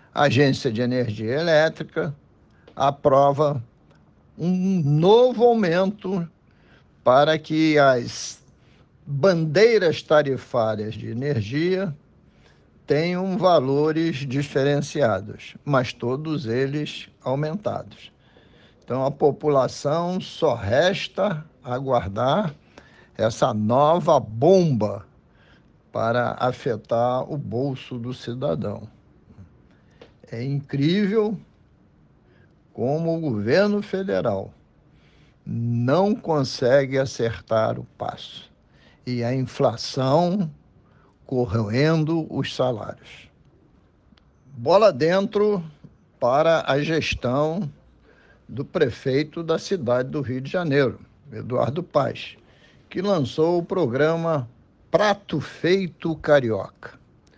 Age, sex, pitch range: 60-79, male, 125-165 Hz